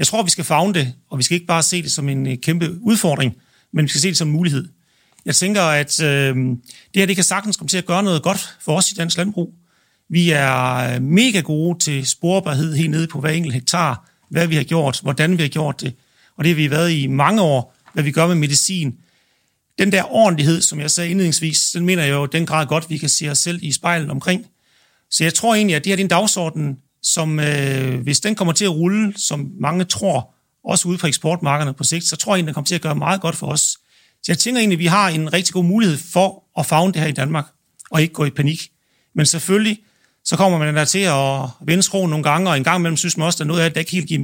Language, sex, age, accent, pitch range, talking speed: Danish, male, 40-59, native, 150-180 Hz, 260 wpm